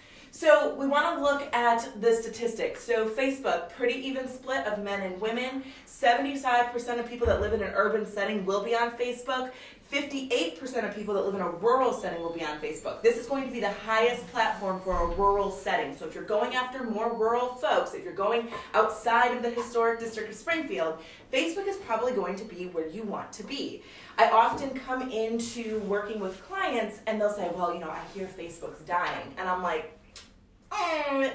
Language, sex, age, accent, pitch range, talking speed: English, female, 20-39, American, 200-260 Hz, 200 wpm